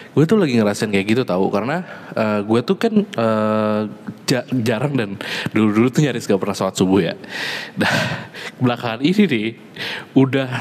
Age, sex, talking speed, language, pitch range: 20-39, male, 165 wpm, Indonesian, 110-175 Hz